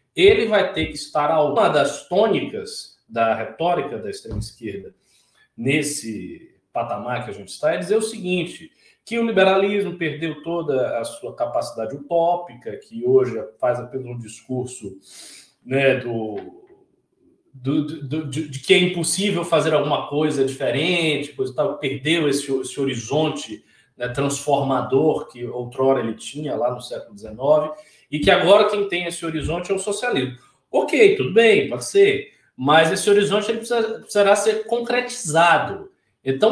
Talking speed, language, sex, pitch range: 135 wpm, Portuguese, male, 140-210 Hz